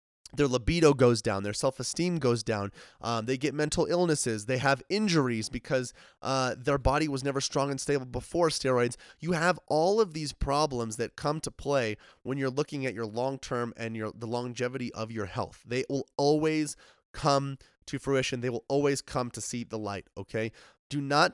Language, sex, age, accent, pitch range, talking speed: English, male, 20-39, American, 120-150 Hz, 190 wpm